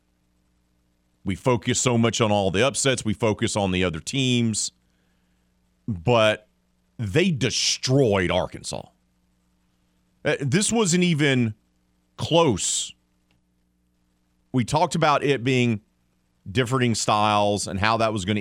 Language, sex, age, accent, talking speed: English, male, 40-59, American, 110 wpm